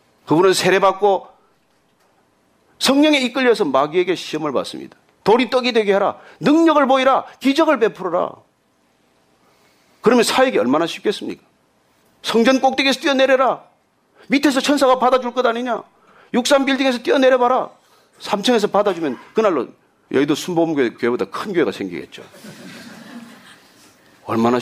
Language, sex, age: Korean, male, 40-59